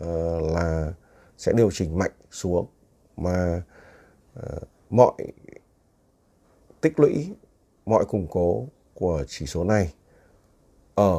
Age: 60-79